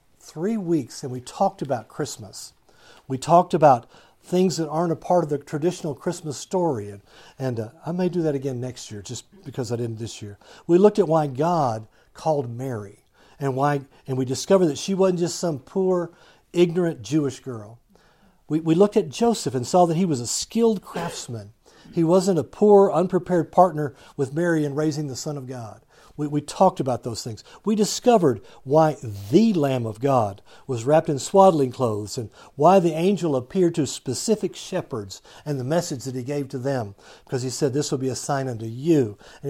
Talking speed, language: 195 wpm, English